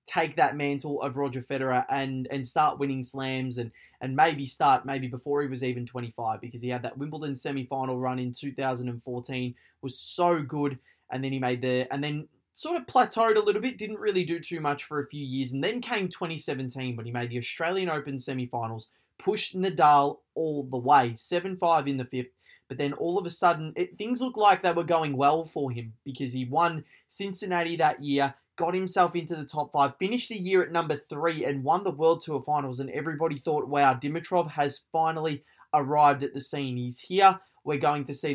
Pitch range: 130-170 Hz